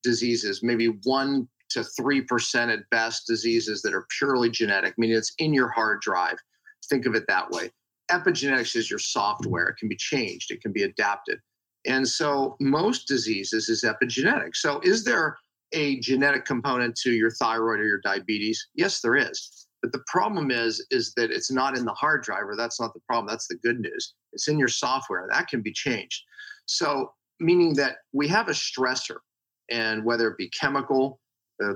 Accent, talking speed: American, 185 wpm